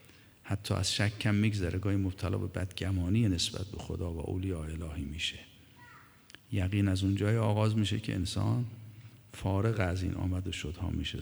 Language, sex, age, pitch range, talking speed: Persian, male, 50-69, 95-110 Hz, 155 wpm